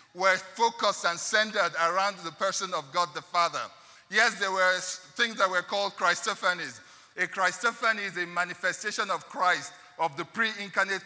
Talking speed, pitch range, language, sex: 155 wpm, 175-215 Hz, English, male